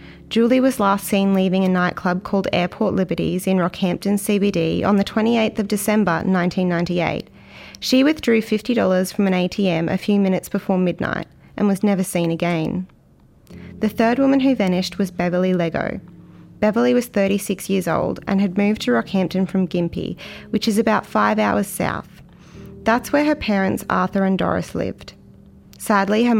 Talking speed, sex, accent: 160 wpm, female, Australian